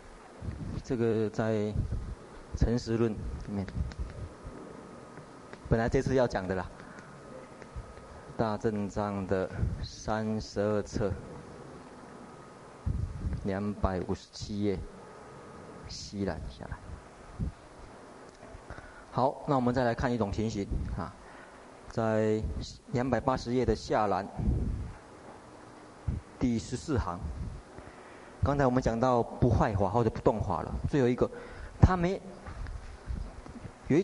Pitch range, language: 100-130 Hz, Chinese